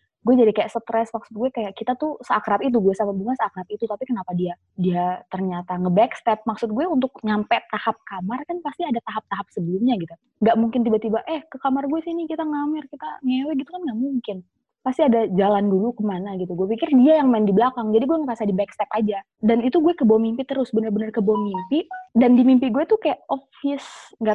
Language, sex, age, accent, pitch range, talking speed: Indonesian, female, 20-39, native, 200-265 Hz, 210 wpm